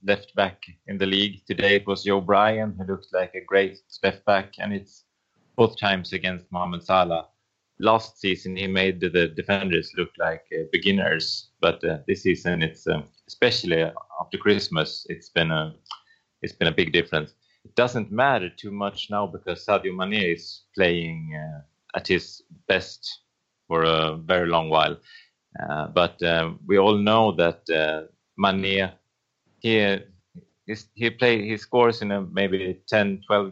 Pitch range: 85-105 Hz